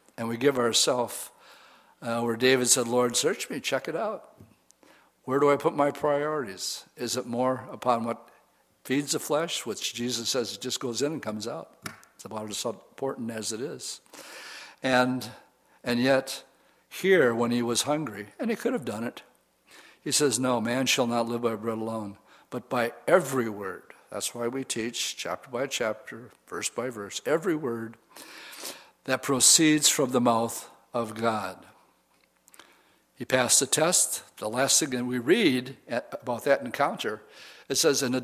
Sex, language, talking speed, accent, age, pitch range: male, English, 170 wpm, American, 60-79, 120-150 Hz